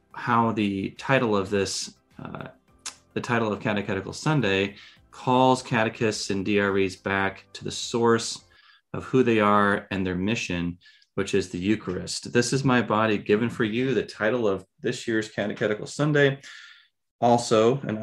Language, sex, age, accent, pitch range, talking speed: English, male, 30-49, American, 95-120 Hz, 155 wpm